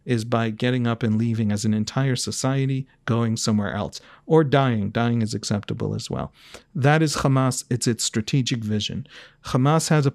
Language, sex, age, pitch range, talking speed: English, male, 40-59, 115-155 Hz, 175 wpm